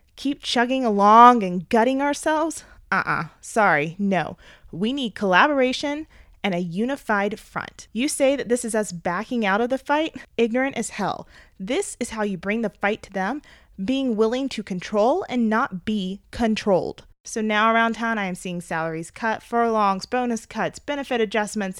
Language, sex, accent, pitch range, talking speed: English, female, American, 205-300 Hz, 170 wpm